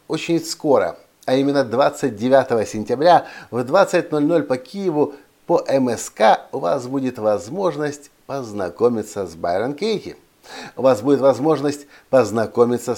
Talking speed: 115 wpm